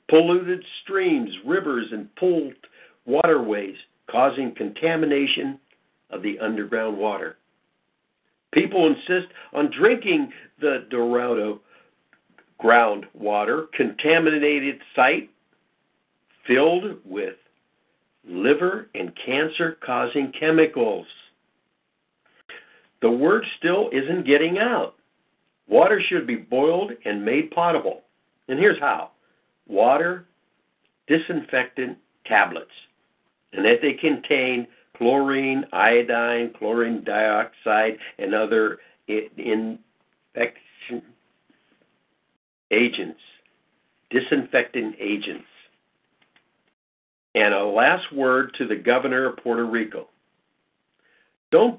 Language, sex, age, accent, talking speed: English, male, 60-79, American, 80 wpm